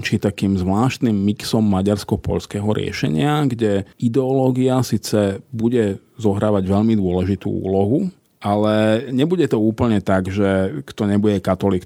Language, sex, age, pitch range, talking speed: Slovak, male, 40-59, 95-120 Hz, 115 wpm